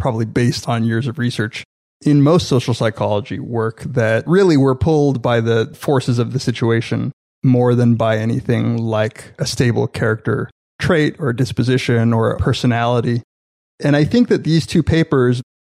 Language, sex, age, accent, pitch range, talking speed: English, male, 20-39, American, 115-140 Hz, 155 wpm